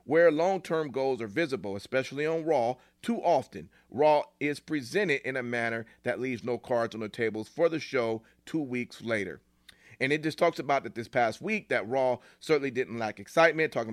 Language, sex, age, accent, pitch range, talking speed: English, male, 40-59, American, 110-150 Hz, 195 wpm